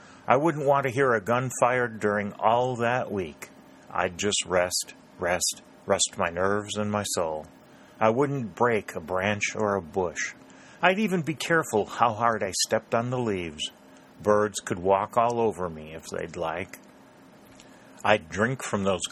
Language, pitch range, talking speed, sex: English, 90-120 Hz, 170 wpm, male